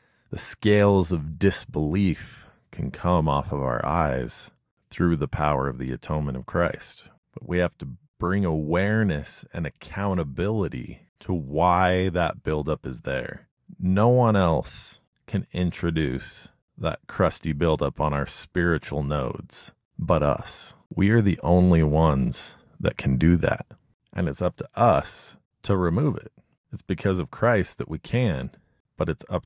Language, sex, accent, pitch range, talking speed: English, male, American, 75-100 Hz, 150 wpm